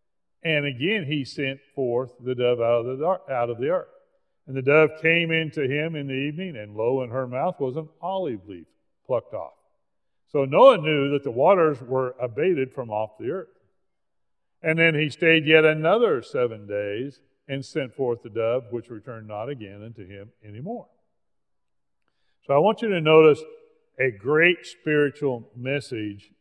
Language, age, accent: English, 50-69, American